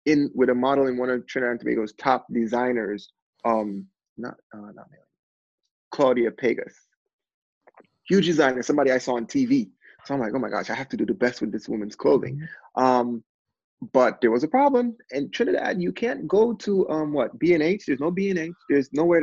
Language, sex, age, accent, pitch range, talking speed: English, male, 20-39, American, 120-165 Hz, 190 wpm